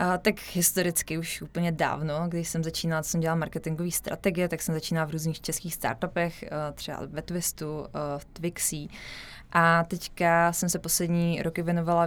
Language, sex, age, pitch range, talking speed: Czech, female, 20-39, 155-175 Hz, 155 wpm